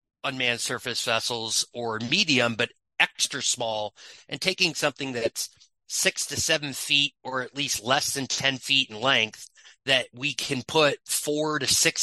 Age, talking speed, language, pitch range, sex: 30-49, 160 wpm, English, 120-140 Hz, male